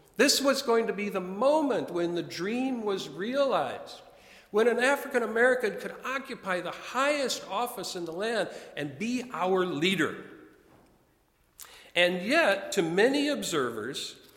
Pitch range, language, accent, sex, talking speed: 140-230 Hz, English, American, male, 140 wpm